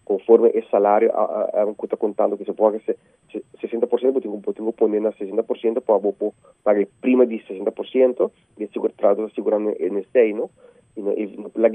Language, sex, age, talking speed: English, male, 30-49, 135 wpm